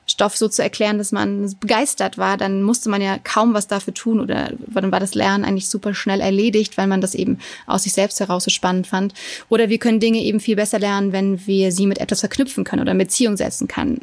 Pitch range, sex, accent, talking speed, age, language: 190-220 Hz, female, German, 240 wpm, 30-49, German